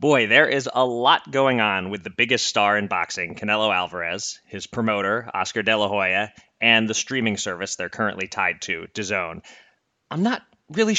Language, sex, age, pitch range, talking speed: English, male, 30-49, 105-145 Hz, 180 wpm